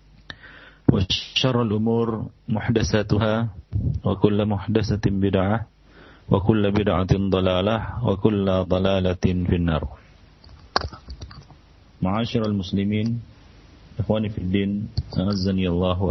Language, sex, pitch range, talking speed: English, male, 90-105 Hz, 50 wpm